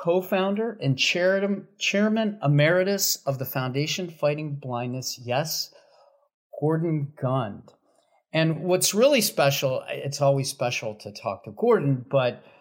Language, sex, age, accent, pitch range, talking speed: English, male, 40-59, American, 130-175 Hz, 115 wpm